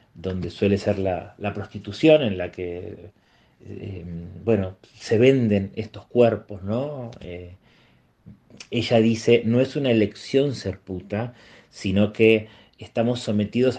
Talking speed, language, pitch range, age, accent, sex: 125 wpm, Spanish, 100-120 Hz, 30-49, Argentinian, male